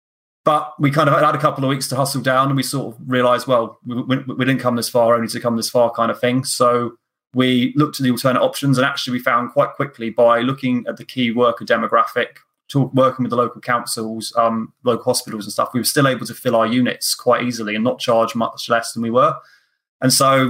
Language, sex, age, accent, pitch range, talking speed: English, male, 20-39, British, 120-135 Hz, 245 wpm